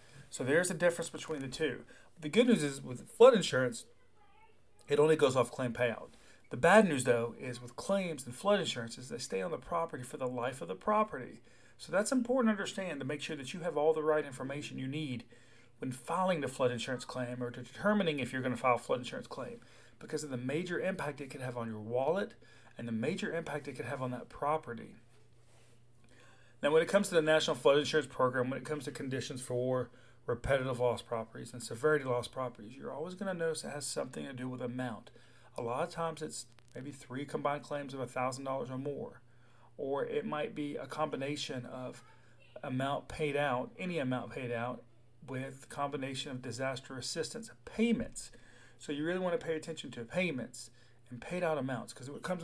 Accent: American